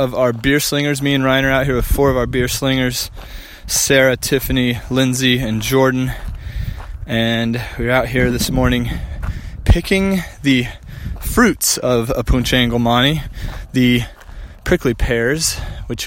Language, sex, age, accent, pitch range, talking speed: English, male, 20-39, American, 110-135 Hz, 145 wpm